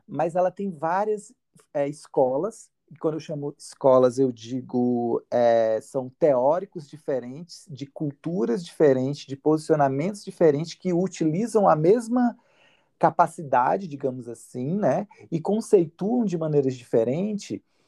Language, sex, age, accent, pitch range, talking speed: Portuguese, male, 40-59, Brazilian, 135-190 Hz, 115 wpm